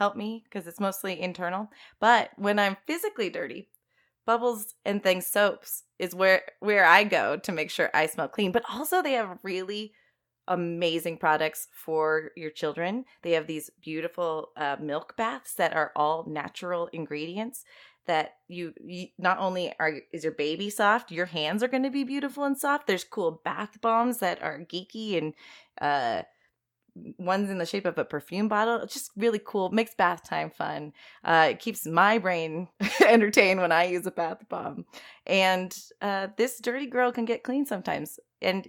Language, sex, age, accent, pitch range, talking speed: English, female, 20-39, American, 170-225 Hz, 180 wpm